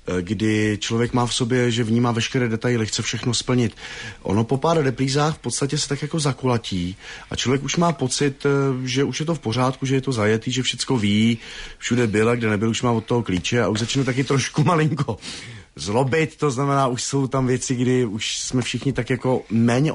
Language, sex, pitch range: Czech, male, 105-130 Hz